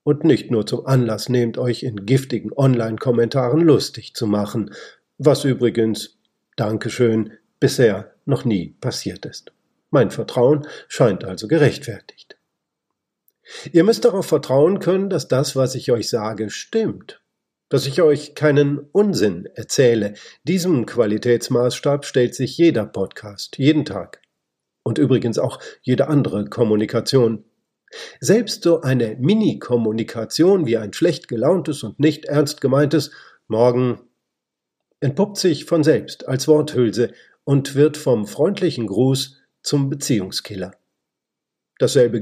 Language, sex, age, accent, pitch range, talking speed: German, male, 50-69, German, 115-150 Hz, 120 wpm